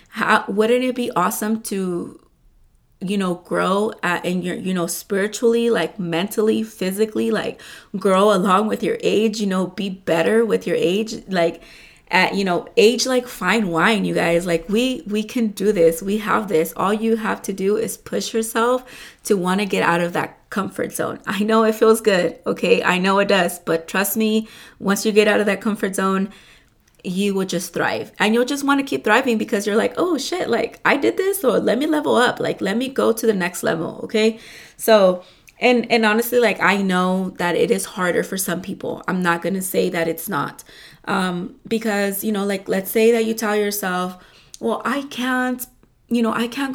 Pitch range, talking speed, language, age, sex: 185-230 Hz, 210 wpm, English, 20-39, female